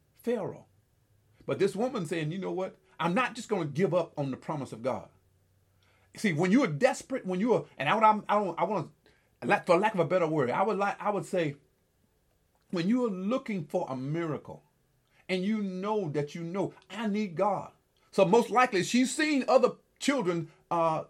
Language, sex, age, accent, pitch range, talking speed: English, male, 40-59, American, 160-225 Hz, 215 wpm